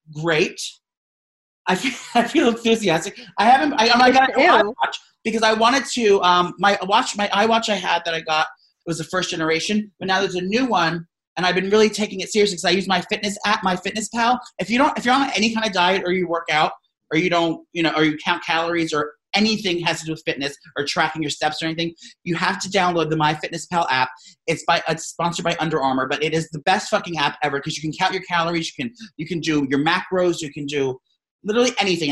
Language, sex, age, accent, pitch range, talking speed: English, male, 30-49, American, 160-195 Hz, 245 wpm